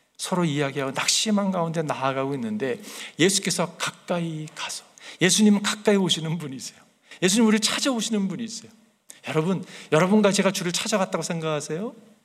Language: English